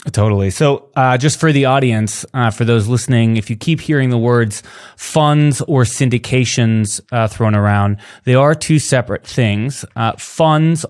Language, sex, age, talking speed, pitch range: English, male, 20-39, 165 wpm, 105-130 Hz